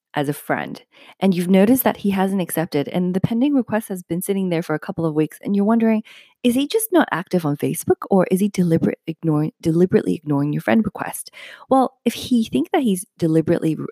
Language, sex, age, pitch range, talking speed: English, female, 30-49, 155-230 Hz, 205 wpm